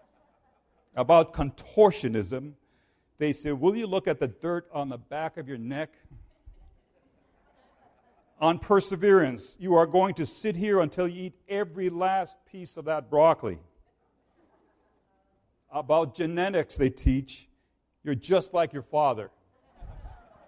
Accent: American